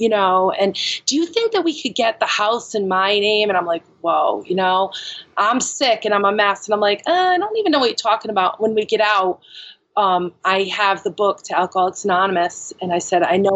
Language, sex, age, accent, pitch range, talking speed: English, female, 30-49, American, 180-220 Hz, 250 wpm